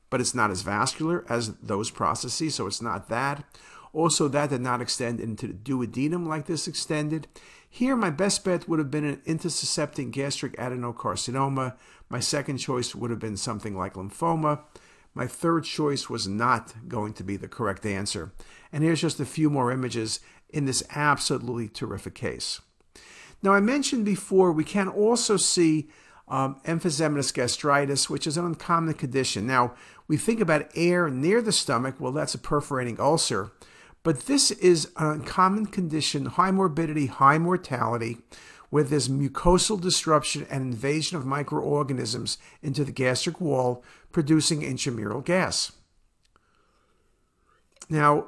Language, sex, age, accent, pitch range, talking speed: English, male, 50-69, American, 125-170 Hz, 150 wpm